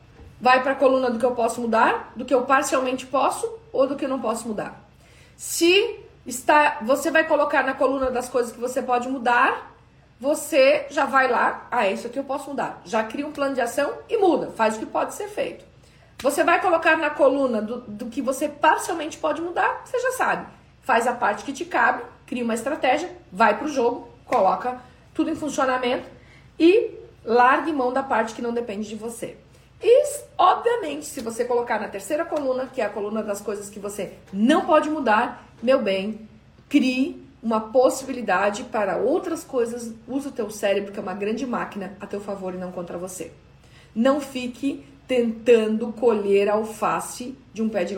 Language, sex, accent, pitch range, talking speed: Portuguese, female, Brazilian, 220-300 Hz, 190 wpm